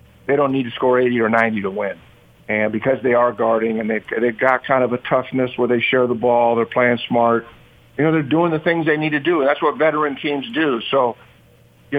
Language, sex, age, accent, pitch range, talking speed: English, male, 50-69, American, 120-145 Hz, 240 wpm